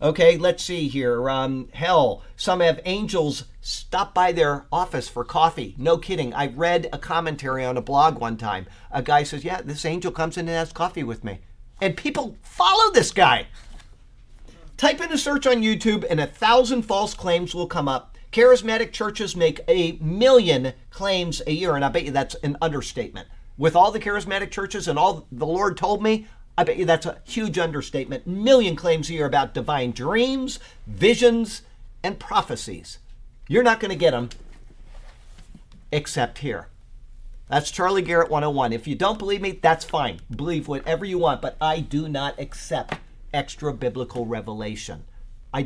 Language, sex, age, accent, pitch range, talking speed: English, male, 50-69, American, 130-200 Hz, 175 wpm